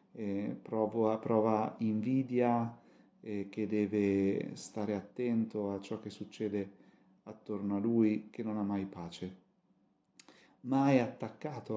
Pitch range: 105-120 Hz